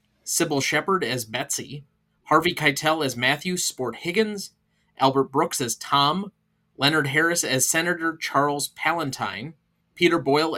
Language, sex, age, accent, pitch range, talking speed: English, male, 30-49, American, 125-165 Hz, 120 wpm